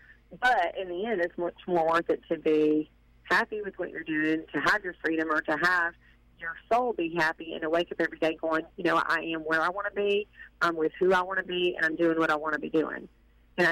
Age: 40-59